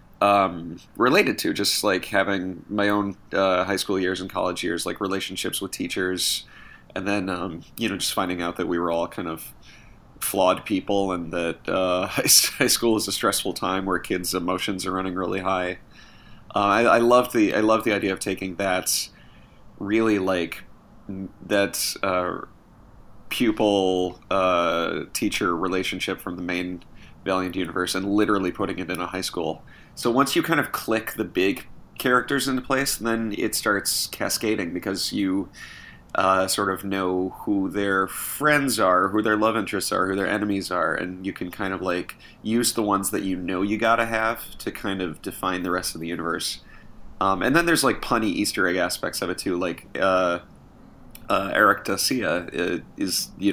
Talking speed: 180 wpm